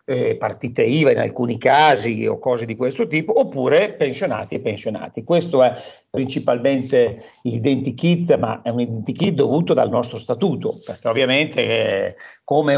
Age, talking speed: 50-69, 135 wpm